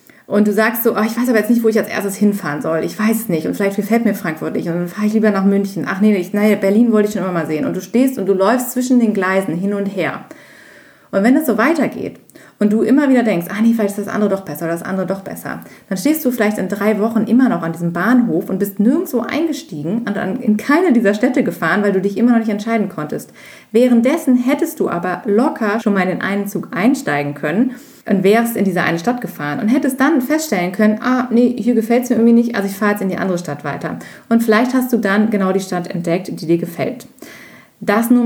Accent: German